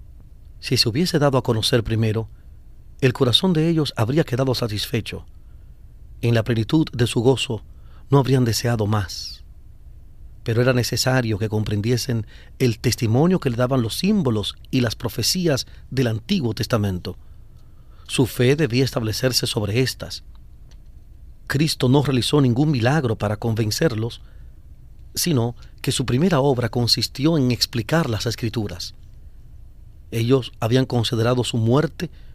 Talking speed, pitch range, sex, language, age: 130 wpm, 105-135 Hz, male, Spanish, 40-59